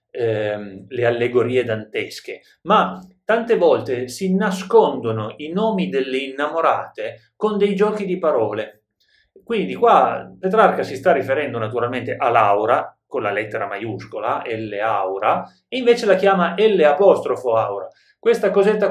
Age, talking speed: 30-49, 125 wpm